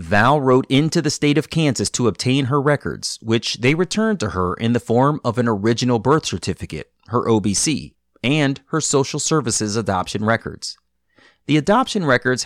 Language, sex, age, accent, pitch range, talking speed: English, male, 30-49, American, 105-150 Hz, 170 wpm